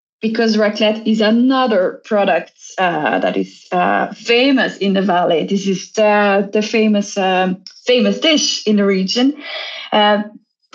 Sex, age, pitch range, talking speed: female, 20-39, 205-240 Hz, 135 wpm